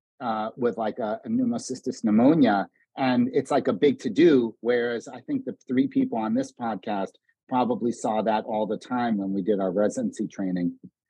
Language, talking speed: English, 190 wpm